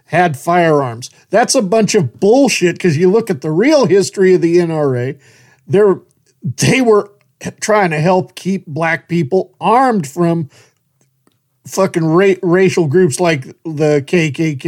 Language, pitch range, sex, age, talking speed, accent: English, 150-190 Hz, male, 50-69, 135 wpm, American